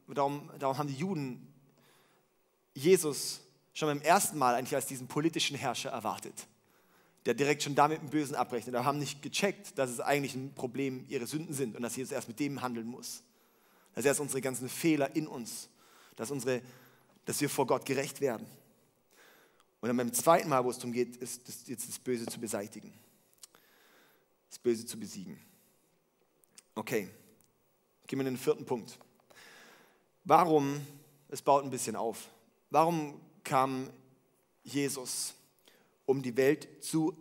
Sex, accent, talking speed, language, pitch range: male, German, 155 wpm, German, 125-150 Hz